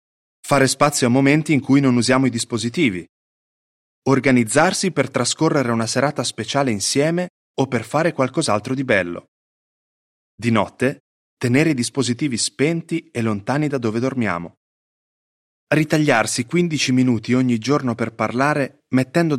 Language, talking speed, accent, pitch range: Italian, 130 wpm, native, 120-155 Hz